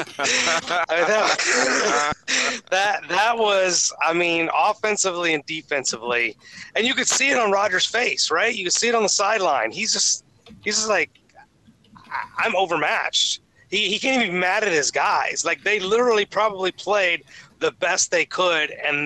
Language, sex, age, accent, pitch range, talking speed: English, male, 30-49, American, 130-185 Hz, 155 wpm